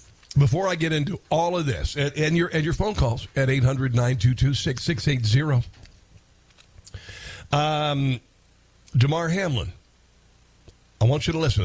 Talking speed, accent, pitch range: 125 wpm, American, 110-155 Hz